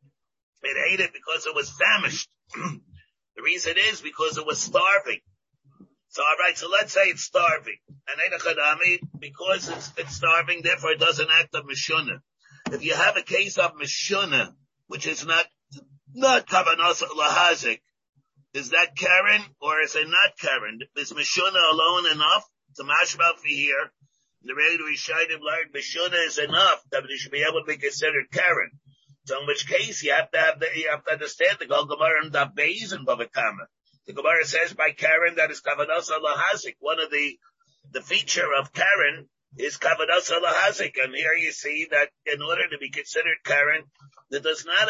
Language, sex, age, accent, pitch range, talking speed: English, male, 50-69, American, 140-175 Hz, 170 wpm